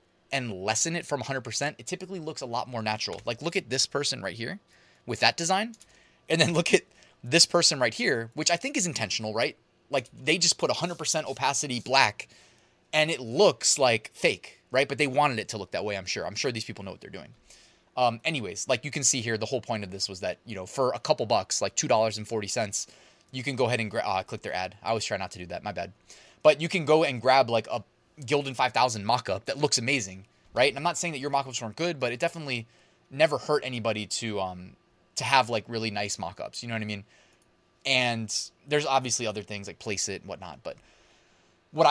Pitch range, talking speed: 110-150 Hz, 240 wpm